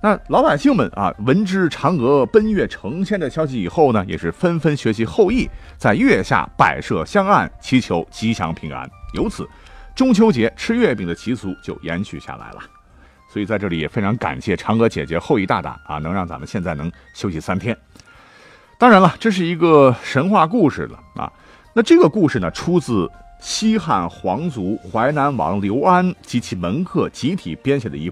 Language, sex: Chinese, male